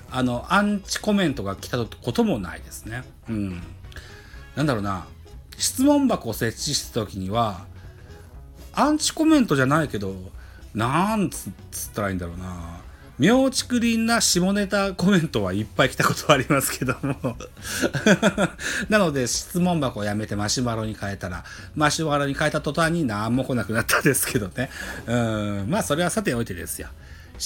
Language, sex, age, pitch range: Japanese, male, 40-59, 95-150 Hz